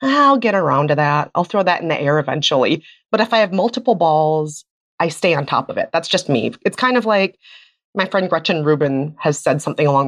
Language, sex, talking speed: English, female, 230 wpm